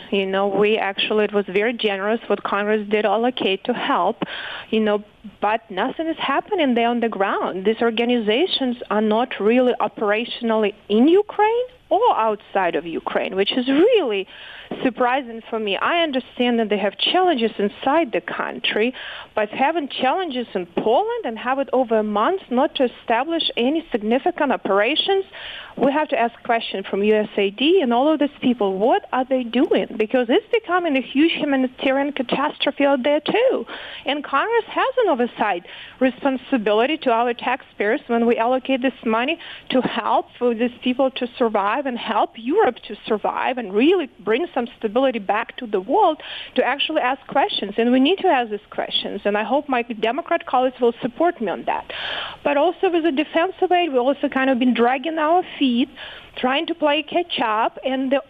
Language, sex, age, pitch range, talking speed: English, female, 30-49, 225-300 Hz, 175 wpm